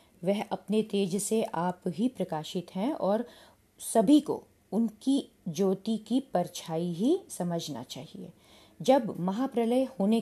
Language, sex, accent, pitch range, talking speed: Hindi, female, native, 175-230 Hz, 125 wpm